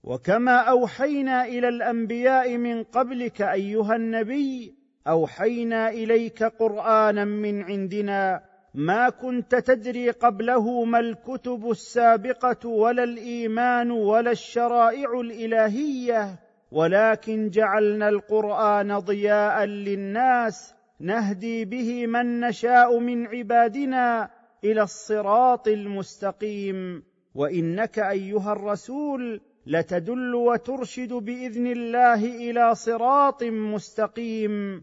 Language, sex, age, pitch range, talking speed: Arabic, male, 40-59, 210-245 Hz, 85 wpm